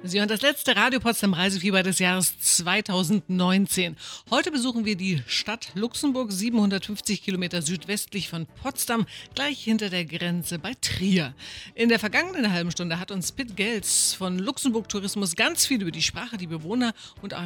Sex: female